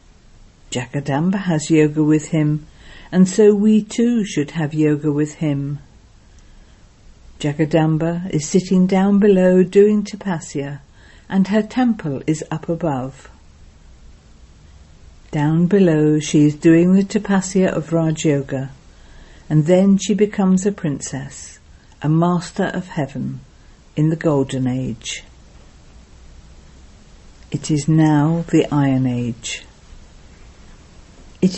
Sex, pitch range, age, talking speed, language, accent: female, 135-195 Hz, 50-69, 110 wpm, English, British